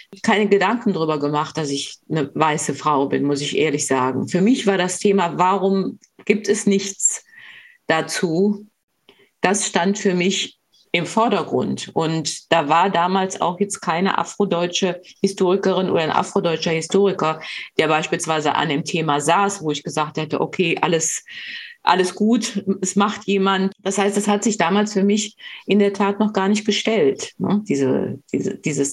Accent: German